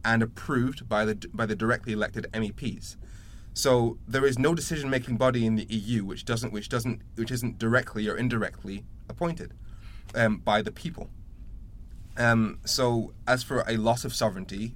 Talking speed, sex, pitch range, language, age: 165 wpm, male, 105-125 Hz, English, 20-39